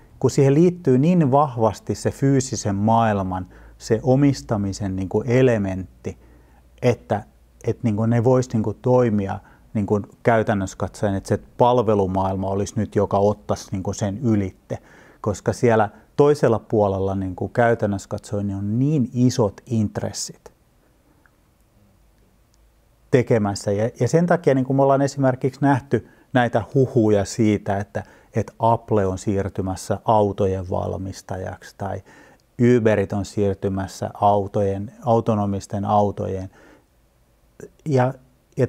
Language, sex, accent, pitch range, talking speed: Finnish, male, native, 100-125 Hz, 115 wpm